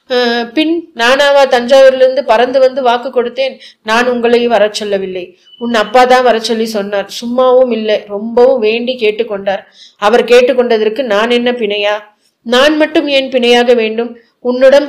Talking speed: 145 wpm